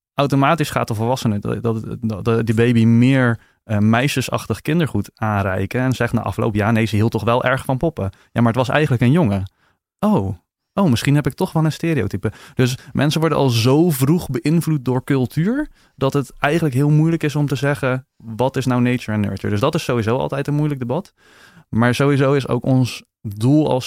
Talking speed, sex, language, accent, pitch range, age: 205 wpm, male, Dutch, Dutch, 110-140 Hz, 20-39